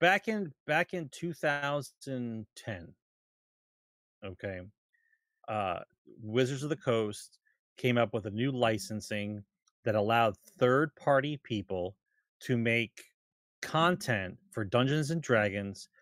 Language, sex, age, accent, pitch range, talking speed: English, male, 30-49, American, 115-150 Hz, 110 wpm